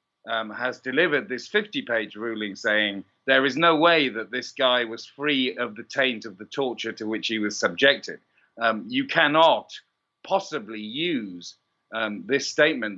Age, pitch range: 50-69, 110-155 Hz